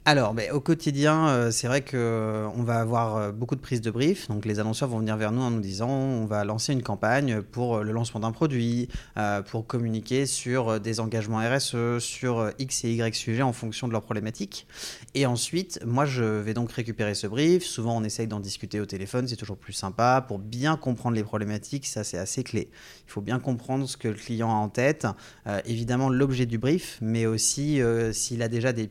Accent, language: French, French